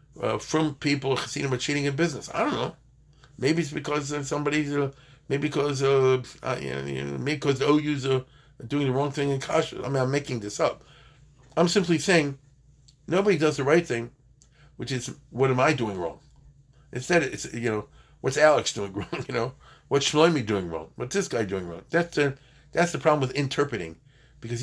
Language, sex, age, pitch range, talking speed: English, male, 50-69, 120-145 Hz, 200 wpm